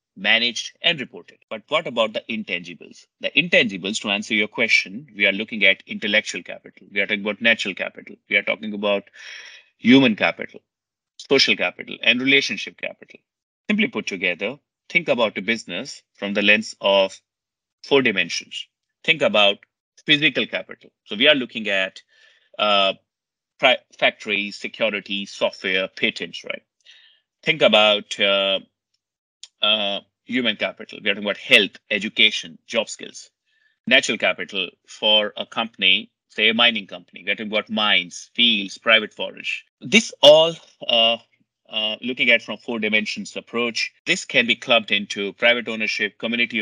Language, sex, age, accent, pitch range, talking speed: English, male, 30-49, Indian, 100-120 Hz, 150 wpm